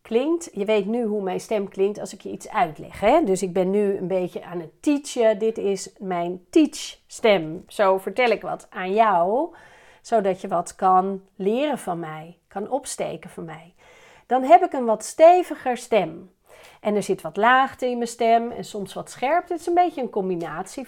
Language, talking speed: Dutch, 195 wpm